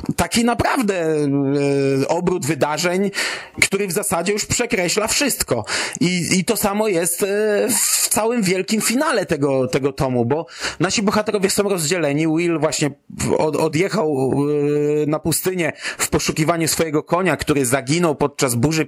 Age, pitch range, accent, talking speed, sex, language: 30-49, 150-195 Hz, native, 140 wpm, male, Polish